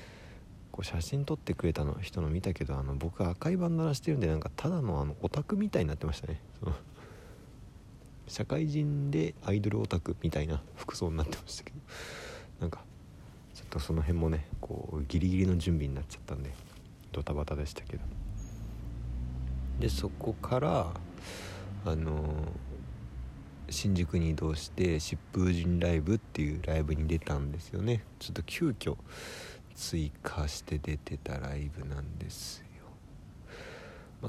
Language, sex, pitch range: Japanese, male, 75-105 Hz